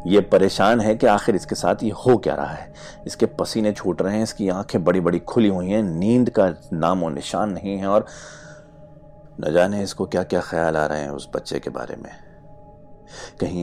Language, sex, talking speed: Hindi, male, 205 wpm